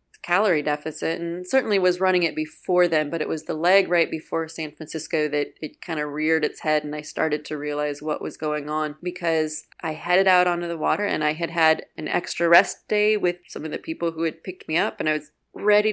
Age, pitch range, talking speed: 30-49, 160-195 Hz, 235 wpm